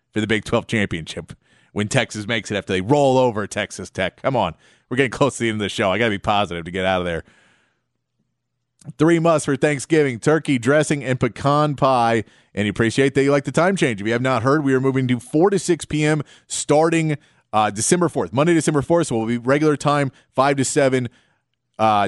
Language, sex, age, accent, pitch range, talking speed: English, male, 30-49, American, 115-145 Hz, 230 wpm